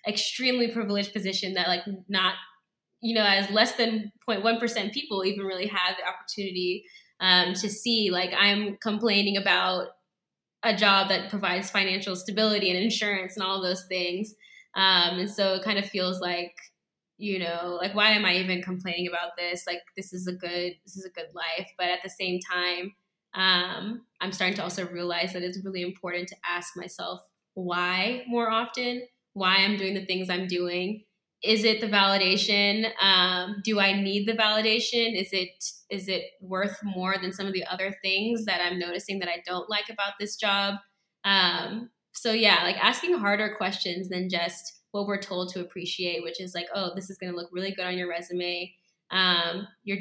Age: 10-29